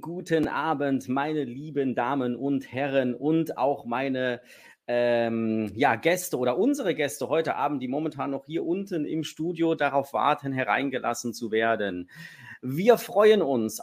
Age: 30-49